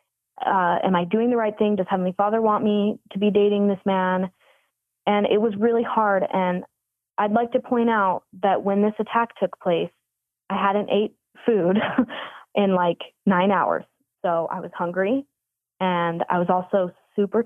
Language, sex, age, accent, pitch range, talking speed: English, female, 20-39, American, 185-220 Hz, 175 wpm